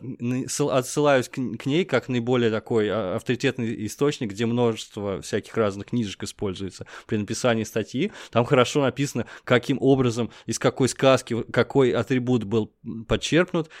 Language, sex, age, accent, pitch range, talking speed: Russian, male, 20-39, native, 110-130 Hz, 125 wpm